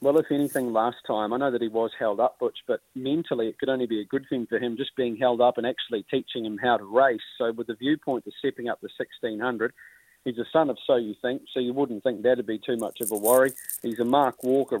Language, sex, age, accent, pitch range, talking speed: English, male, 40-59, Australian, 120-140 Hz, 270 wpm